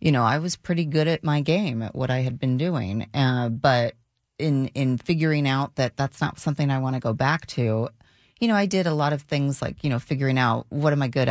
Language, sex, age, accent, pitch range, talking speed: English, female, 30-49, American, 125-150 Hz, 255 wpm